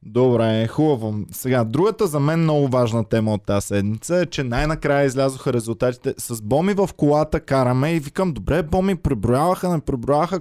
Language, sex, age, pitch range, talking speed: Bulgarian, male, 20-39, 120-155 Hz, 175 wpm